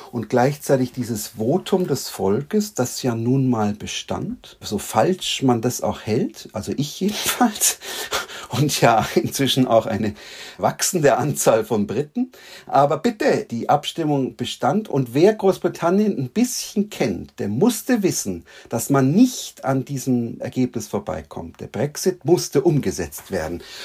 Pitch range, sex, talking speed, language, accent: 120-180 Hz, male, 140 wpm, German, German